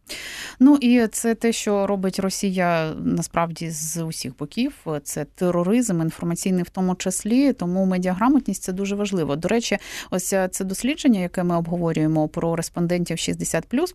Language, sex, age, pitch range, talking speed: Ukrainian, female, 30-49, 165-225 Hz, 140 wpm